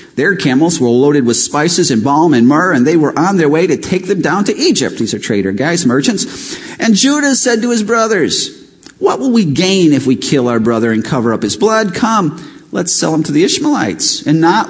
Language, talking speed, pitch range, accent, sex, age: English, 230 wpm, 135-200 Hz, American, male, 40-59